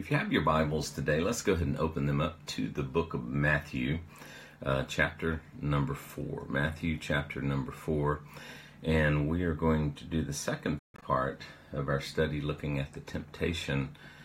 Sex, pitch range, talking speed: male, 70-80 Hz, 175 wpm